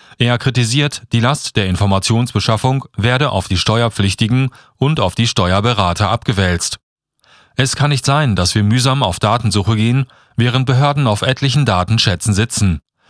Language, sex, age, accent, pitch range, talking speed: German, male, 40-59, German, 95-125 Hz, 140 wpm